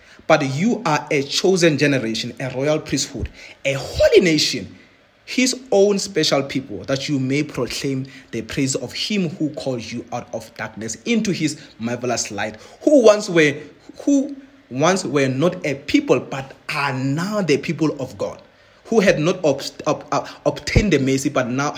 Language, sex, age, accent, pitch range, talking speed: English, male, 30-49, South African, 135-180 Hz, 170 wpm